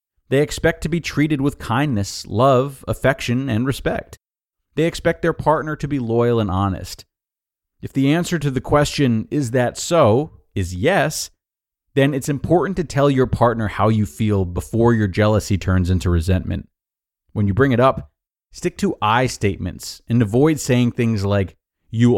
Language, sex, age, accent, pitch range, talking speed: English, male, 30-49, American, 100-140 Hz, 170 wpm